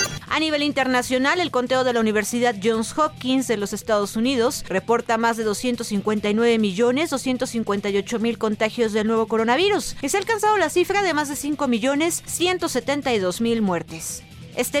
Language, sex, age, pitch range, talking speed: Spanish, female, 40-59, 215-275 Hz, 140 wpm